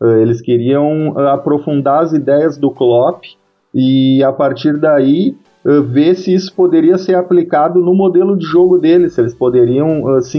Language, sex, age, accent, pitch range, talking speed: Portuguese, male, 30-49, Brazilian, 140-180 Hz, 150 wpm